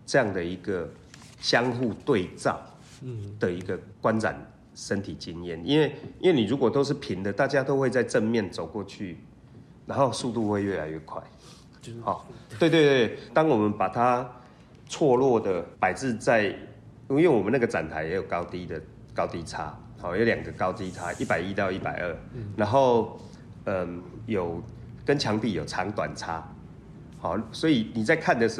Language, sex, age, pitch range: Chinese, male, 30-49, 100-130 Hz